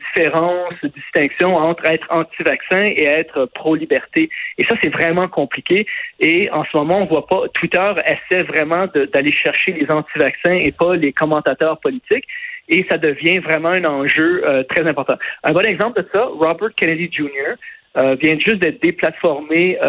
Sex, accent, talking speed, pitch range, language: male, Canadian, 170 wpm, 145-190 Hz, French